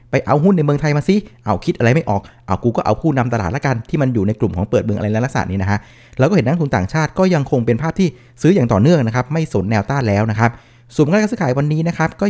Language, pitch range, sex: Thai, 115-150 Hz, male